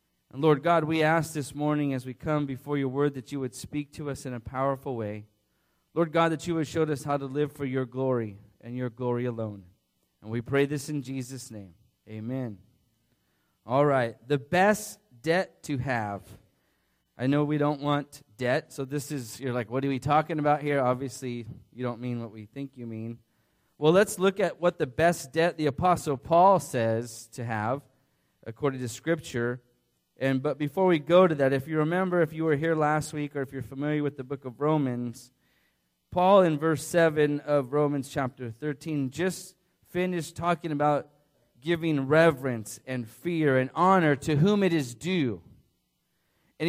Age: 30-49